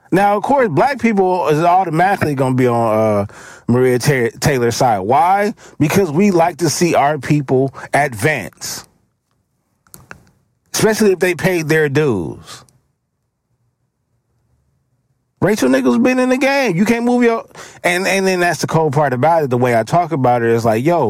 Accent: American